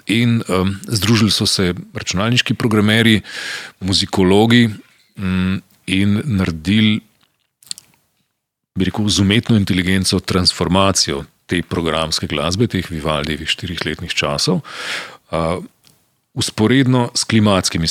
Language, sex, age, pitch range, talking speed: Slovak, male, 40-59, 85-110 Hz, 95 wpm